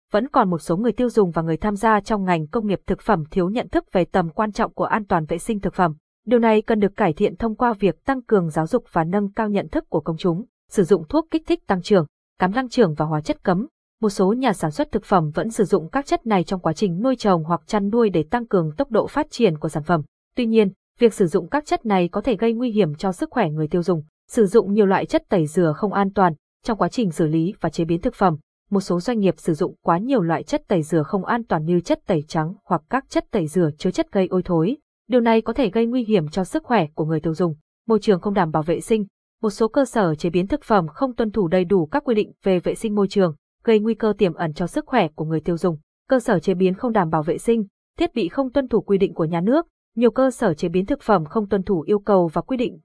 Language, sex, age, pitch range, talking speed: Vietnamese, female, 20-39, 175-230 Hz, 285 wpm